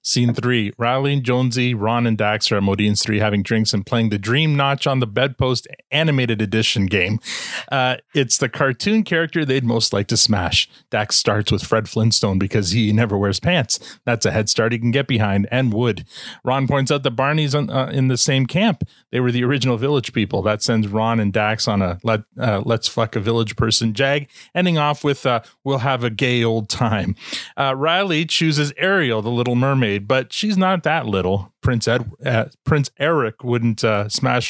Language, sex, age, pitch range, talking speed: English, male, 30-49, 110-140 Hz, 200 wpm